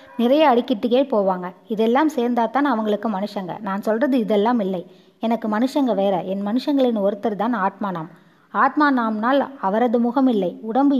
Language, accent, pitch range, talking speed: Tamil, native, 205-265 Hz, 135 wpm